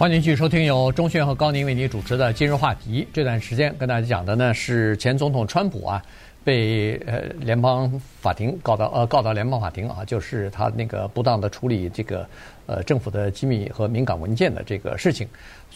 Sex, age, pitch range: male, 50-69, 105-140 Hz